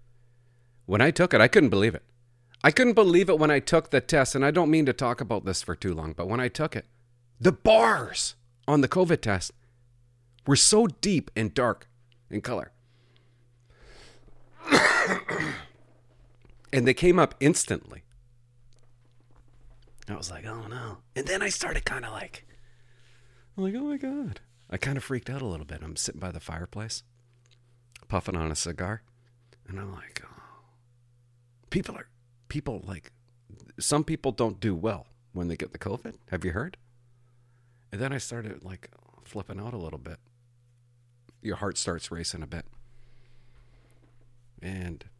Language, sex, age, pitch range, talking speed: English, male, 40-59, 105-125 Hz, 160 wpm